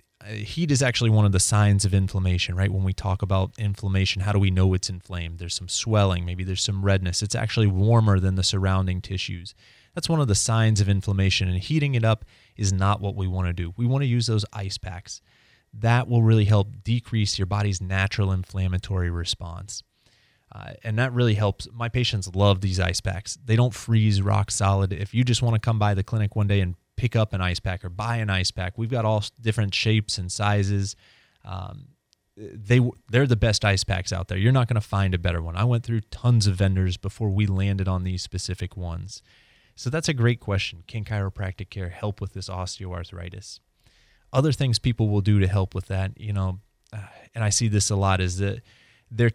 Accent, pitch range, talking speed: American, 95-115 Hz, 215 wpm